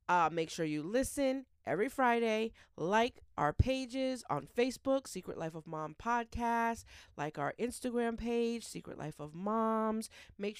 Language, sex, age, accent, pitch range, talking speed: English, female, 30-49, American, 180-230 Hz, 145 wpm